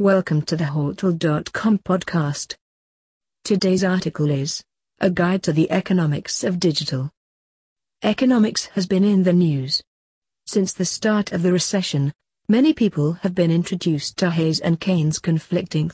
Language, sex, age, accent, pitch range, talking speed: English, female, 40-59, British, 155-195 Hz, 140 wpm